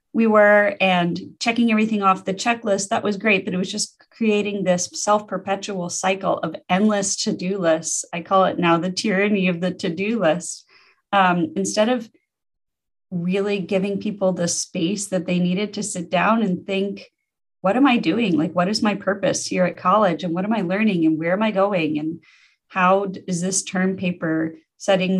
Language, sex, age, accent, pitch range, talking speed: English, female, 30-49, American, 180-215 Hz, 185 wpm